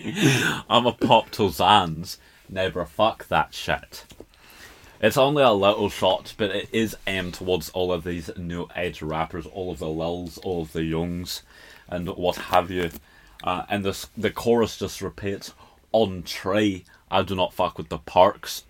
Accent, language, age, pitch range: British, English, 30-49, 80-95 Hz